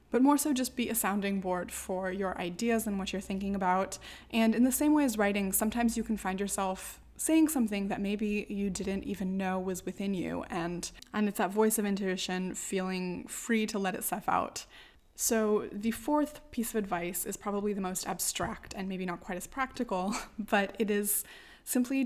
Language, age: English, 20-39